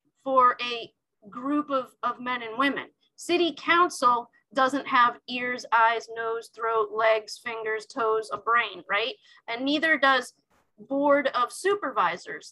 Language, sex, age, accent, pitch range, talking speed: English, female, 30-49, American, 225-285 Hz, 135 wpm